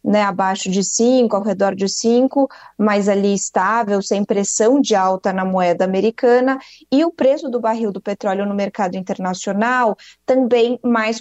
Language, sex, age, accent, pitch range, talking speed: Portuguese, female, 20-39, Brazilian, 205-245 Hz, 160 wpm